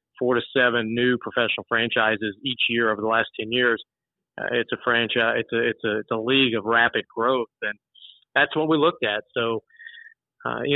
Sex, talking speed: male, 200 wpm